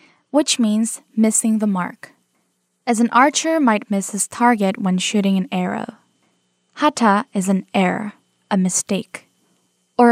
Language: Korean